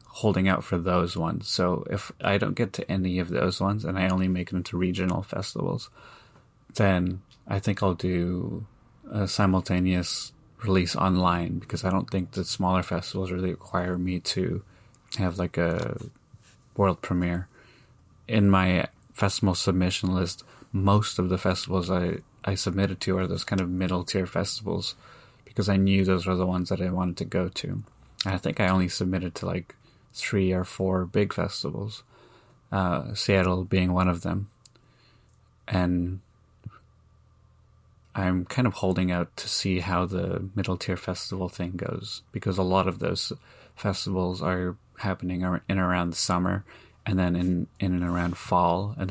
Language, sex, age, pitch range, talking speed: English, male, 30-49, 90-105 Hz, 165 wpm